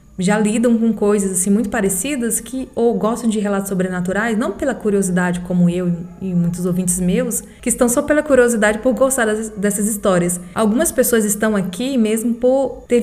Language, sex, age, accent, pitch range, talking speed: Portuguese, female, 20-39, Brazilian, 190-230 Hz, 175 wpm